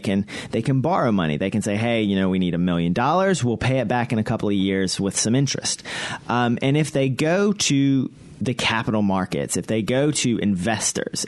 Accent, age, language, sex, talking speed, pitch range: American, 30-49, English, male, 225 wpm, 110-135 Hz